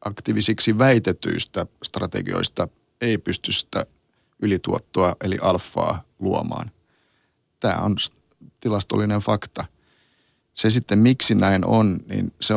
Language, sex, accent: Finnish, male, native